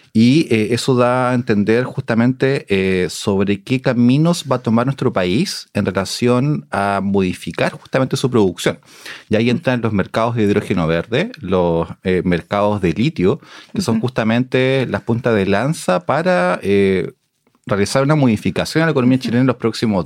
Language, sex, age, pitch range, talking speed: Spanish, male, 30-49, 100-130 Hz, 165 wpm